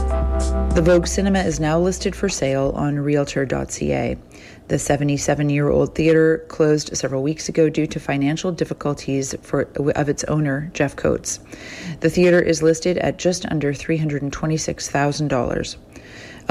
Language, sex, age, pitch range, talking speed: English, female, 40-59, 140-165 Hz, 125 wpm